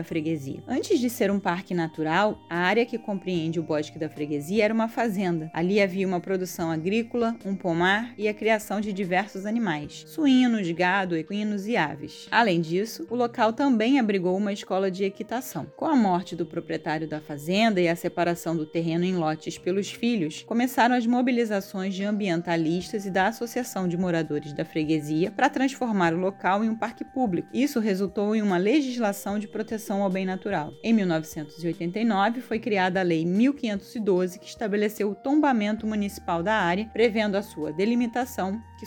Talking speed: 175 wpm